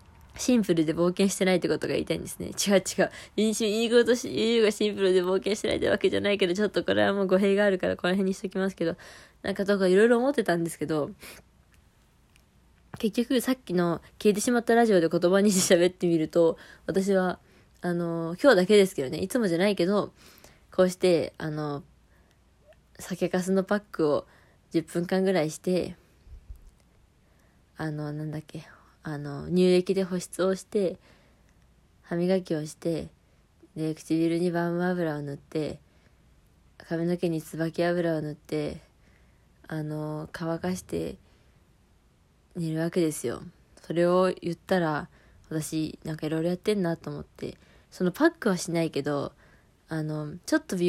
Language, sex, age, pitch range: Japanese, female, 20-39, 155-195 Hz